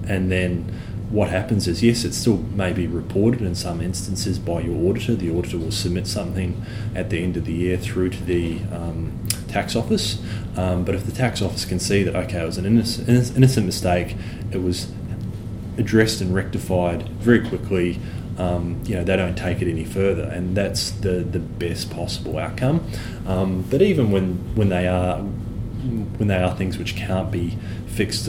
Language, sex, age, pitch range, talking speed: English, male, 20-39, 90-110 Hz, 190 wpm